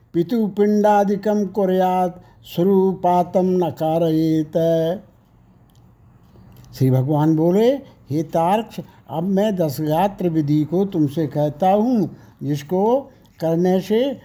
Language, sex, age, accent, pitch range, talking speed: Hindi, male, 60-79, native, 150-205 Hz, 90 wpm